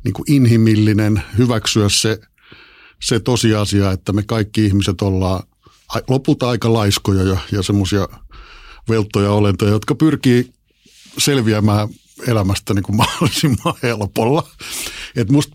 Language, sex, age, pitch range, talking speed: Finnish, male, 50-69, 105-130 Hz, 110 wpm